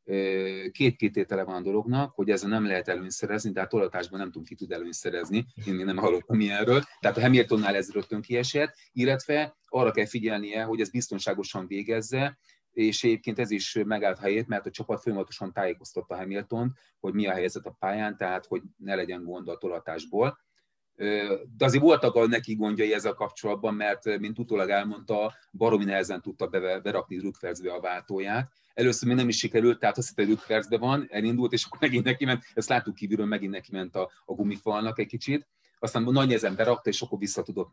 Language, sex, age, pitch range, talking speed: Hungarian, male, 30-49, 95-120 Hz, 180 wpm